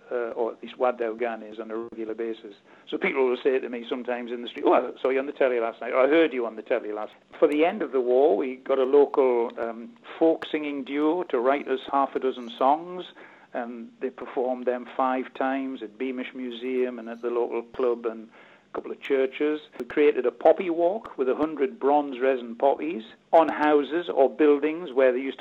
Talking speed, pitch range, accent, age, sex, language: 225 wpm, 125-150 Hz, British, 60-79, male, English